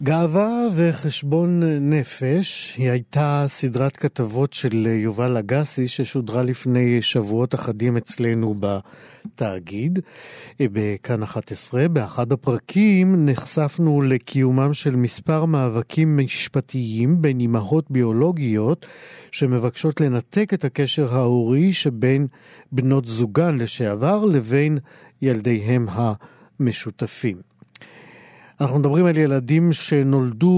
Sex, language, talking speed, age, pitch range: male, Hebrew, 90 wpm, 50-69, 120-155 Hz